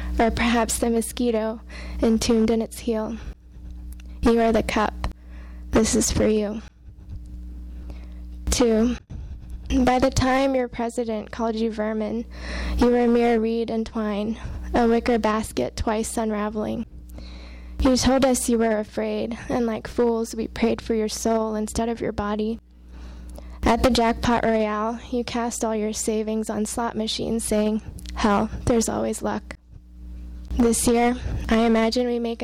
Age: 10-29